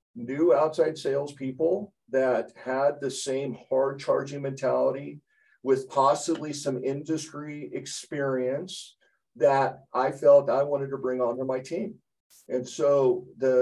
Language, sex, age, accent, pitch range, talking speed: English, male, 50-69, American, 130-170 Hz, 125 wpm